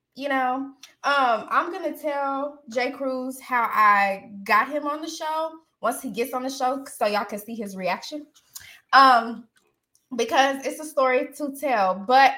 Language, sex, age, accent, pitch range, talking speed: English, female, 20-39, American, 235-300 Hz, 175 wpm